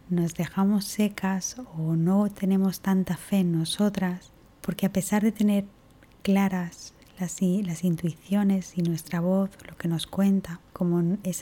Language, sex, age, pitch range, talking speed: Spanish, female, 20-39, 170-195 Hz, 145 wpm